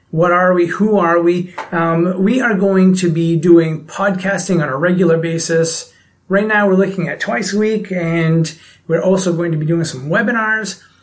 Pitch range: 165-195 Hz